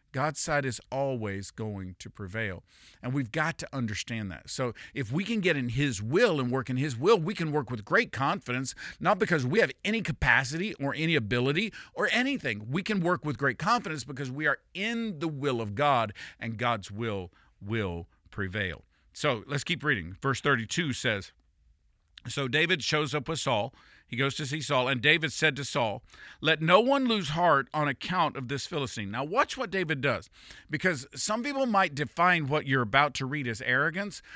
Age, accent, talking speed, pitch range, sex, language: 50-69, American, 195 wpm, 120-170 Hz, male, English